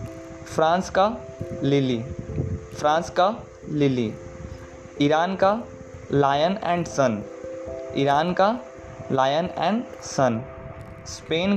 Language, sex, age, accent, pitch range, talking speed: Hindi, male, 20-39, native, 110-175 Hz, 90 wpm